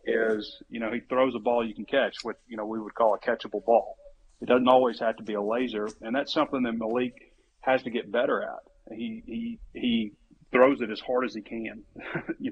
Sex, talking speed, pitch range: male, 230 wpm, 110-130 Hz